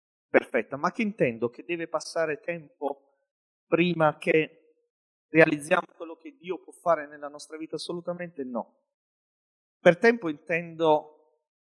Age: 40-59